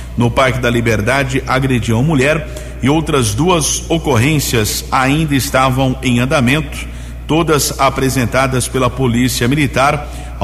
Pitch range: 120-140 Hz